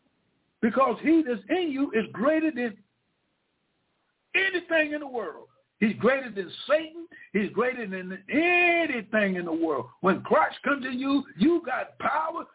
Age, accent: 60-79, American